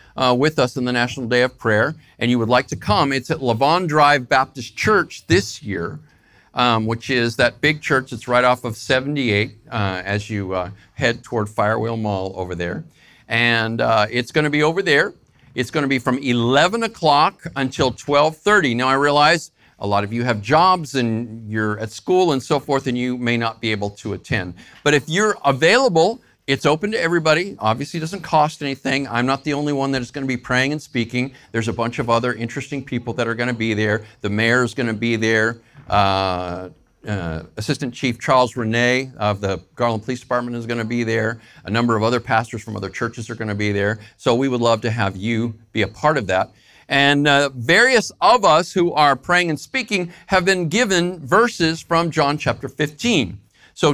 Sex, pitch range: male, 115-150 Hz